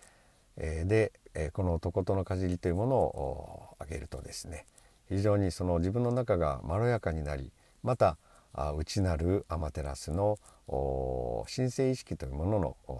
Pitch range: 75-100 Hz